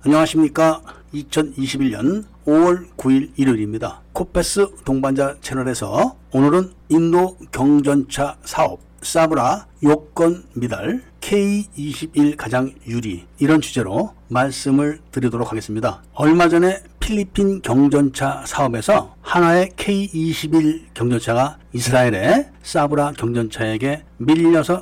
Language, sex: Korean, male